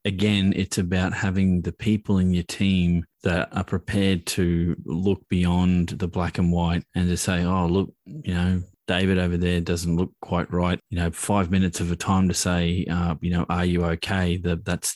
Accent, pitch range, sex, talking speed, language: Australian, 90-100 Hz, male, 200 wpm, English